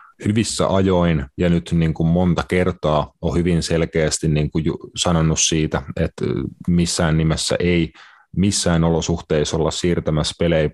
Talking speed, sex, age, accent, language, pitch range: 140 wpm, male, 30-49, native, Finnish, 80-90 Hz